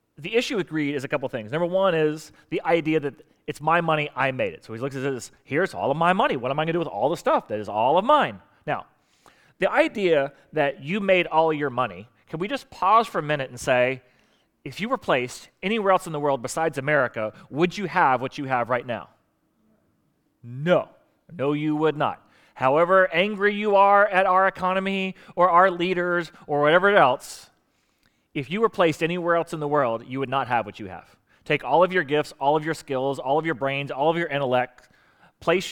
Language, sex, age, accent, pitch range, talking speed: English, male, 30-49, American, 135-175 Hz, 225 wpm